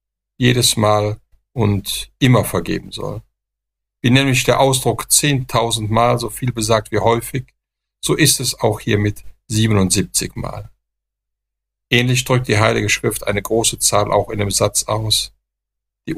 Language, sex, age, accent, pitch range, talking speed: German, male, 50-69, German, 105-120 Hz, 145 wpm